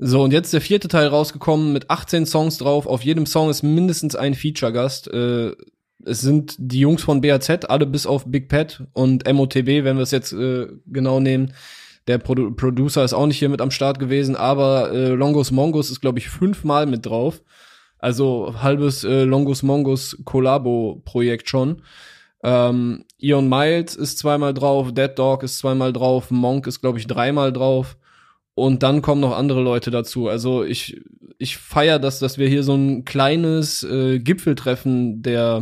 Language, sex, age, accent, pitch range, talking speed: German, male, 10-29, German, 130-145 Hz, 180 wpm